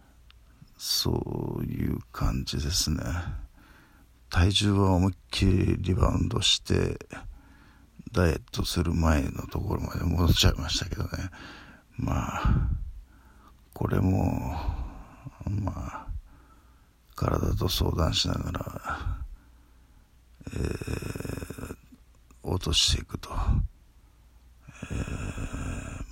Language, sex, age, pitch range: Japanese, male, 60-79, 70-95 Hz